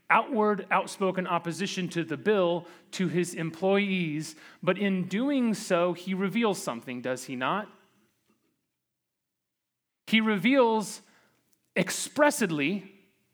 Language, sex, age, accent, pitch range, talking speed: English, male, 30-49, American, 180-220 Hz, 100 wpm